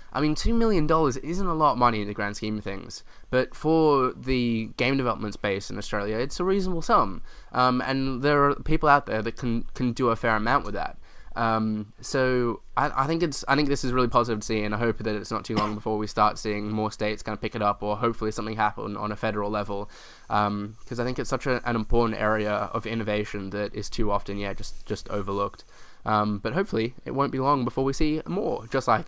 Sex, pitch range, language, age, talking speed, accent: male, 110-135 Hz, English, 10-29, 245 wpm, Australian